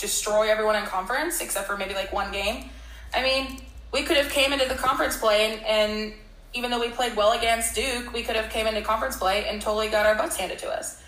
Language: English